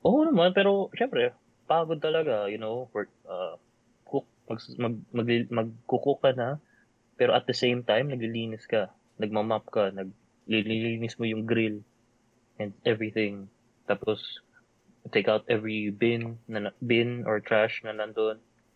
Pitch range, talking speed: 105-120 Hz, 140 wpm